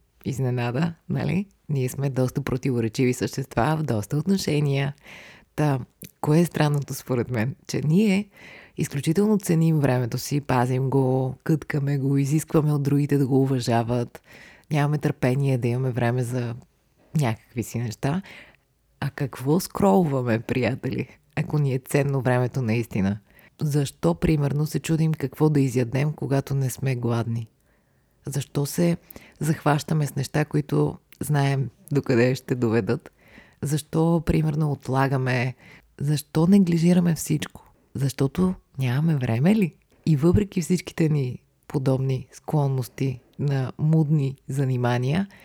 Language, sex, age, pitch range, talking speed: Bulgarian, female, 30-49, 130-160 Hz, 120 wpm